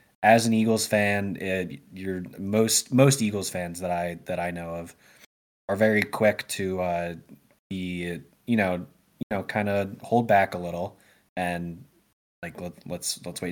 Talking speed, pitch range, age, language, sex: 170 wpm, 90-110 Hz, 20-39, English, male